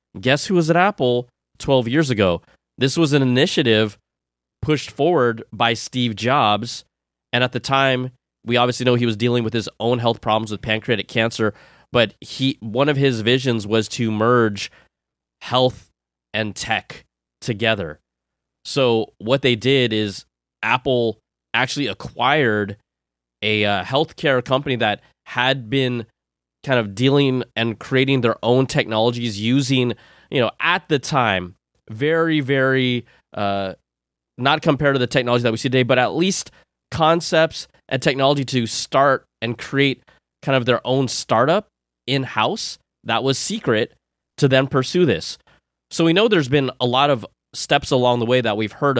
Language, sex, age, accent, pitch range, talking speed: English, male, 20-39, American, 110-135 Hz, 155 wpm